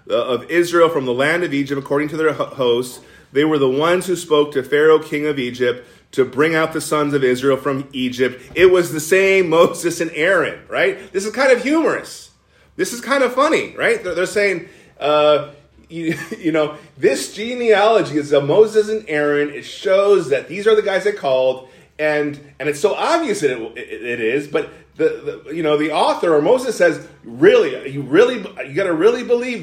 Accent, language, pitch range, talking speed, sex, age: American, English, 130-210 Hz, 205 wpm, male, 30-49